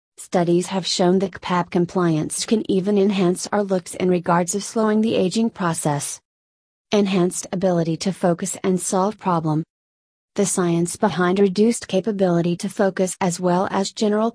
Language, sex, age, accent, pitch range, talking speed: English, female, 30-49, American, 175-200 Hz, 150 wpm